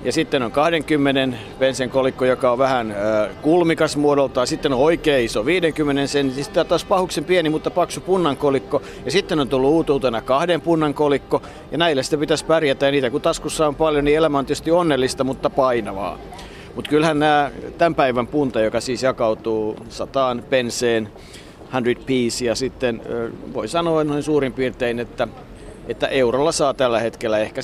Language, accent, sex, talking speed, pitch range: Finnish, native, male, 165 wpm, 120-150 Hz